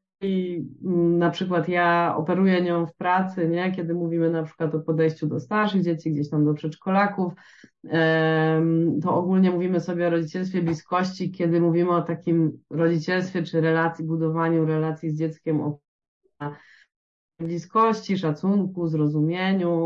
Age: 20-39